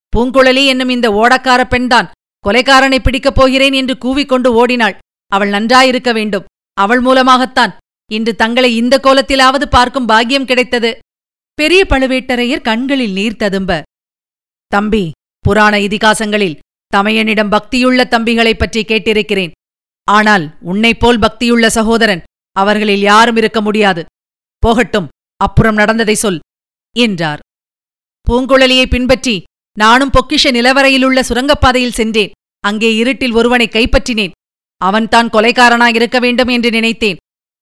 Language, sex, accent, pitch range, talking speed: Tamil, female, native, 215-250 Hz, 100 wpm